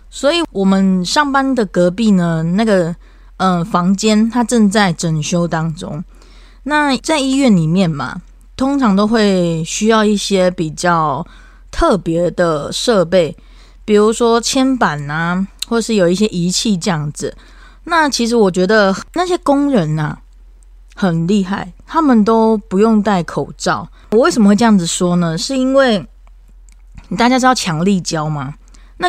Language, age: Chinese, 20-39